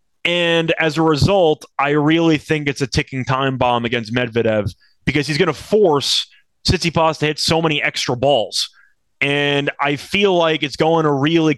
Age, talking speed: 30-49, 175 wpm